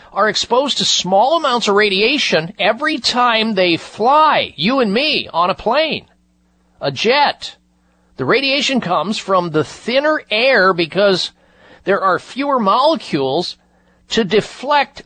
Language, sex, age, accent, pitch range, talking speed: English, male, 50-69, American, 165-225 Hz, 130 wpm